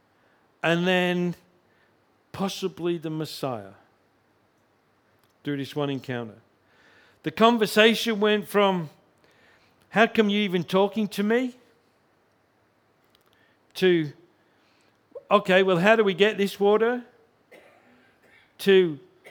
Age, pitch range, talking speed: 50-69, 140-195 Hz, 95 wpm